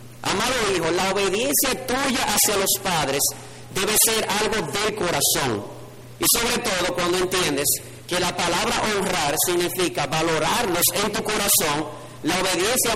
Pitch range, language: 150-215 Hz, Spanish